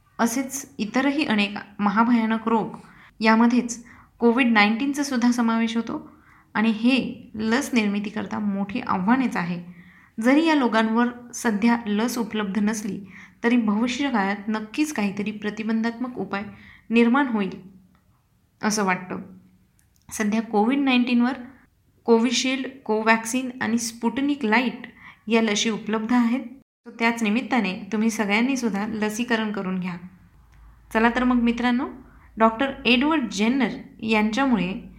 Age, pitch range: 20-39, 205-255 Hz